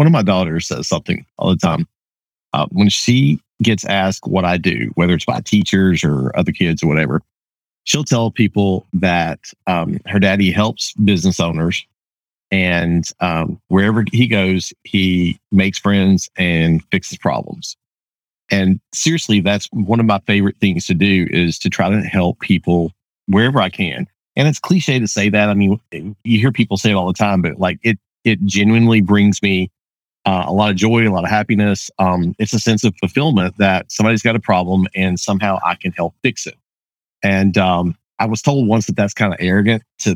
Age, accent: 40-59, American